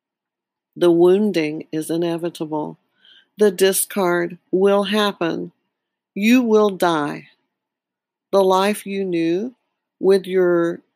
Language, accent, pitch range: English, American, 180-225 Hz